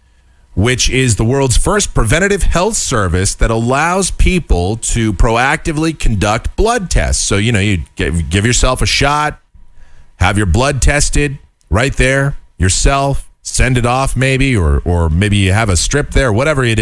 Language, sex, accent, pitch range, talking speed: English, male, American, 85-130 Hz, 160 wpm